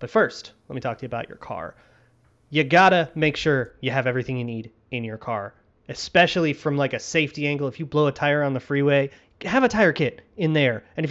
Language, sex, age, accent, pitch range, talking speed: English, male, 30-49, American, 125-155 Hz, 240 wpm